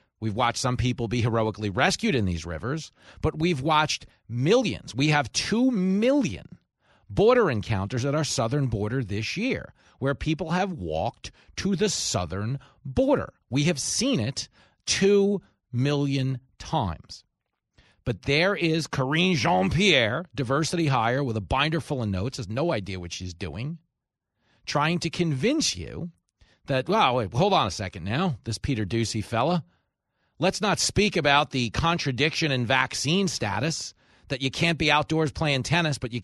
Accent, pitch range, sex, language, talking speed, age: American, 120-175 Hz, male, English, 155 wpm, 40-59